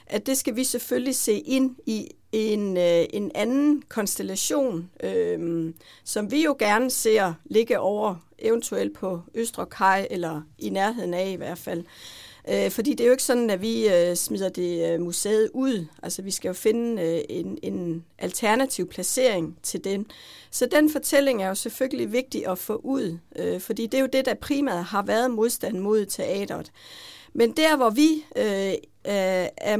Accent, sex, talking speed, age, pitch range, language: native, female, 175 wpm, 60-79, 185-255 Hz, Danish